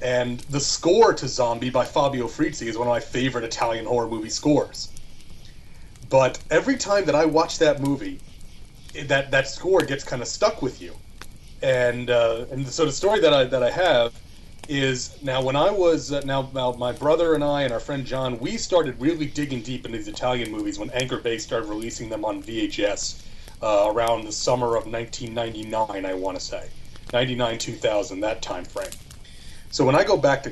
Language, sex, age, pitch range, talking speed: English, male, 30-49, 120-155 Hz, 195 wpm